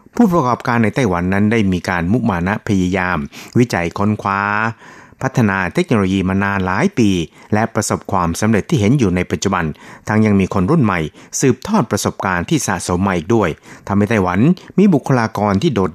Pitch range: 95-120 Hz